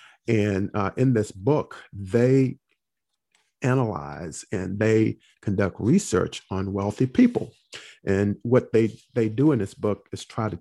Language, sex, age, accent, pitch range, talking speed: English, male, 40-59, American, 100-125 Hz, 140 wpm